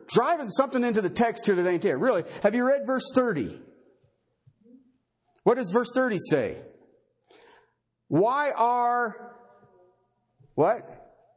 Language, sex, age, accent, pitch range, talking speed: English, male, 50-69, American, 215-315 Hz, 120 wpm